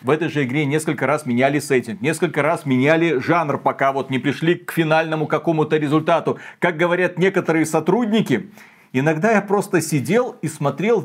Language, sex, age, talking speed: Russian, male, 40-59, 165 wpm